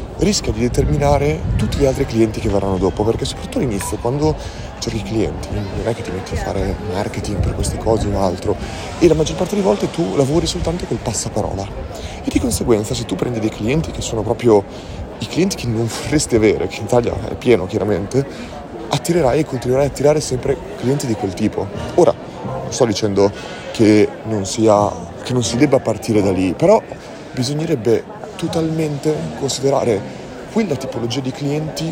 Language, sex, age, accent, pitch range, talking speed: Italian, male, 30-49, native, 105-135 Hz, 180 wpm